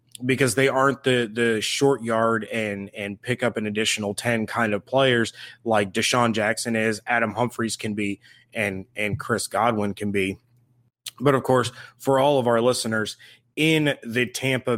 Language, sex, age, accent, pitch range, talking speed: English, male, 20-39, American, 115-150 Hz, 170 wpm